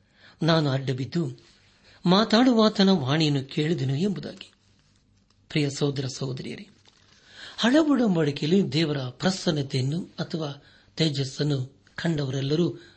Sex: male